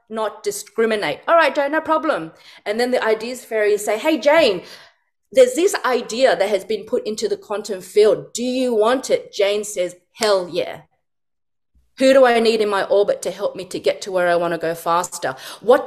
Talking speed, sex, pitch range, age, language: 200 wpm, female, 185-245 Hz, 30-49, English